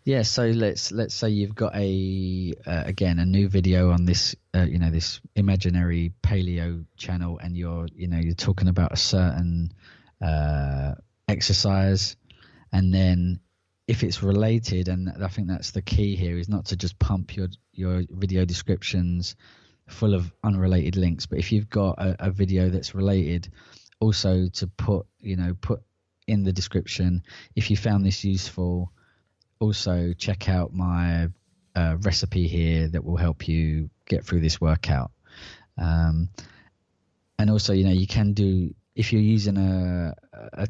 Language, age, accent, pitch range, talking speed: English, 20-39, British, 90-100 Hz, 160 wpm